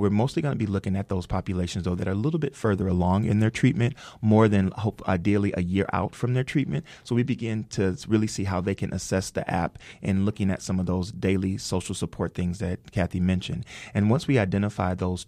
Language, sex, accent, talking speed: English, male, American, 235 wpm